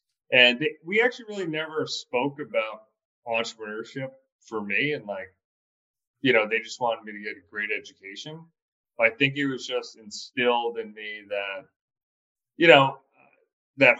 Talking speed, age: 160 wpm, 30-49